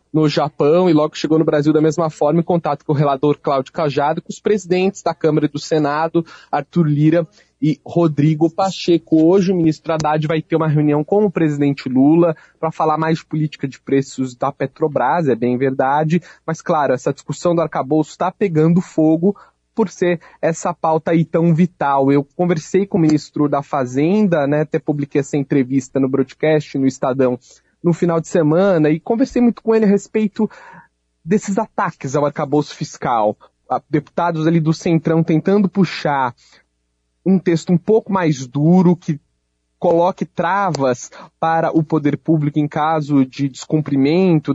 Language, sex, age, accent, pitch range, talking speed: Portuguese, male, 20-39, Brazilian, 145-185 Hz, 170 wpm